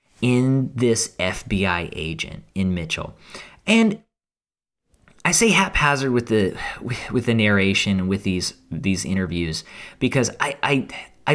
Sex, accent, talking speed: male, American, 125 wpm